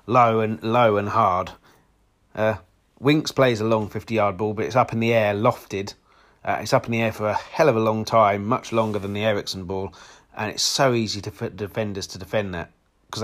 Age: 30-49